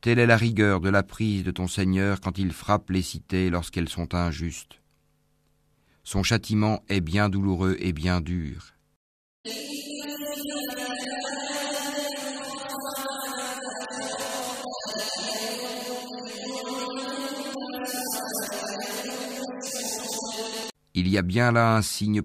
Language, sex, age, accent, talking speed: French, male, 50-69, French, 90 wpm